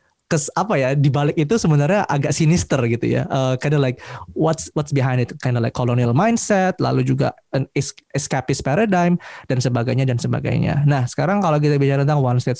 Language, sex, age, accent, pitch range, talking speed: Indonesian, male, 20-39, native, 130-160 Hz, 185 wpm